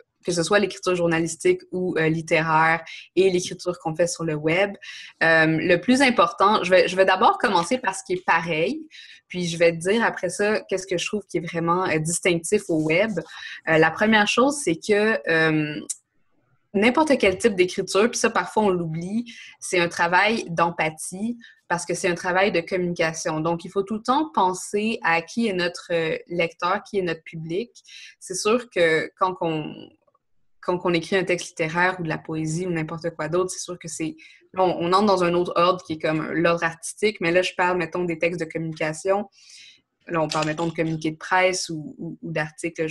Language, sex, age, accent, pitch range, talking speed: French, female, 20-39, Canadian, 165-195 Hz, 205 wpm